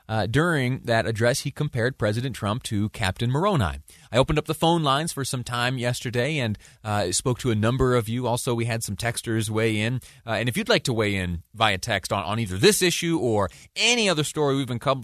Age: 30-49